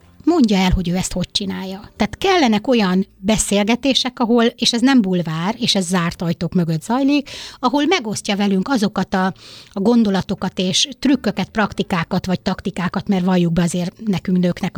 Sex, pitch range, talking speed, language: female, 185-235 Hz, 160 wpm, Hungarian